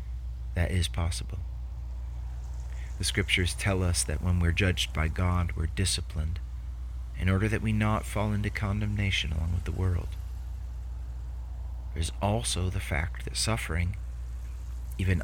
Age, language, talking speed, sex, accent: 30-49, English, 135 wpm, male, American